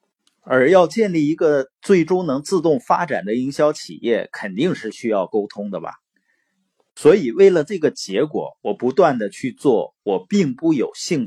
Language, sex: Chinese, male